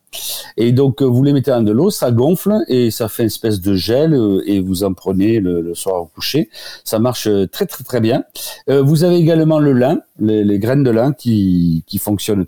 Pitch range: 100-150 Hz